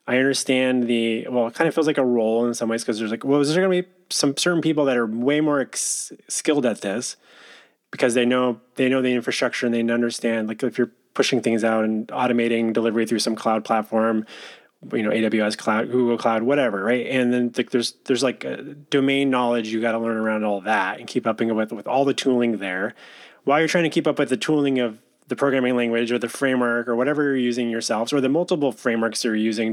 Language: English